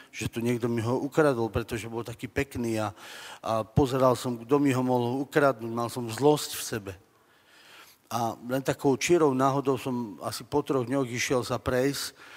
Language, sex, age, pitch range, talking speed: Slovak, male, 40-59, 125-140 Hz, 180 wpm